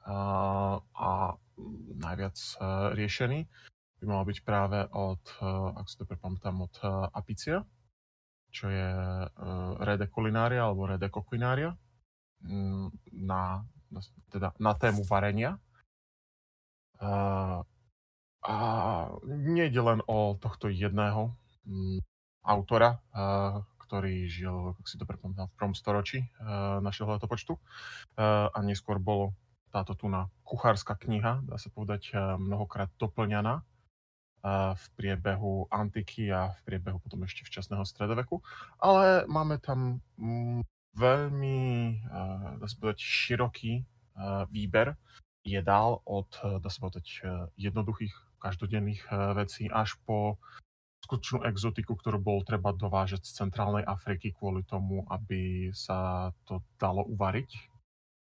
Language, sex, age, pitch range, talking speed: Slovak, male, 20-39, 95-115 Hz, 105 wpm